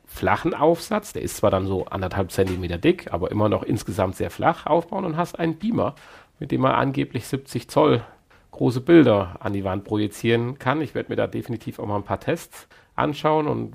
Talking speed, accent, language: 200 wpm, German, German